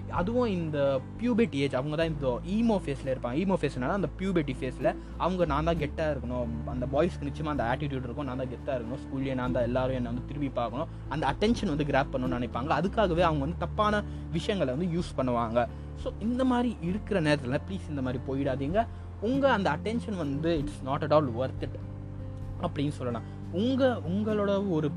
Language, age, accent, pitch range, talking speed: Tamil, 20-39, native, 130-195 Hz, 180 wpm